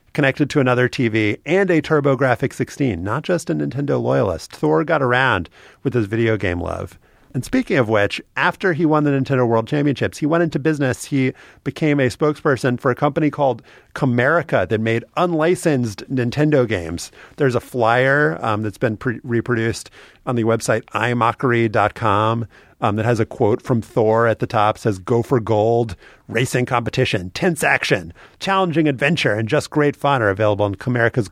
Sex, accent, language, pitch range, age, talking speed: male, American, English, 110-145 Hz, 40-59, 165 wpm